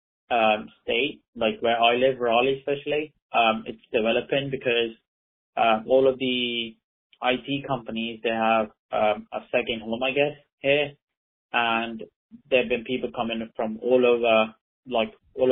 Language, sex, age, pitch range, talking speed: English, male, 20-39, 110-125 Hz, 145 wpm